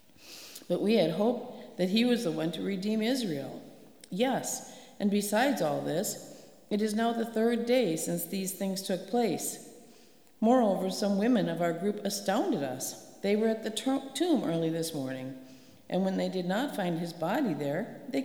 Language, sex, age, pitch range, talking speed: English, female, 50-69, 175-240 Hz, 180 wpm